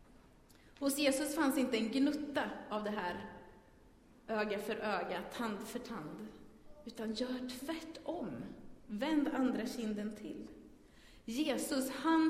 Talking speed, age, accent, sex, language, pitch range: 115 wpm, 30-49, native, female, Swedish, 215-275 Hz